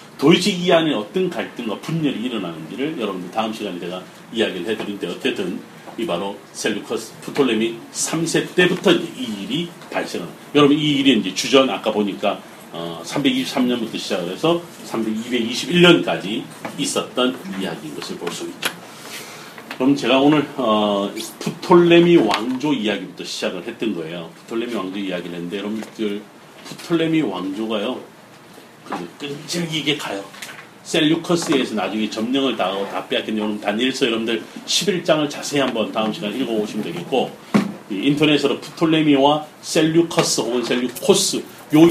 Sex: male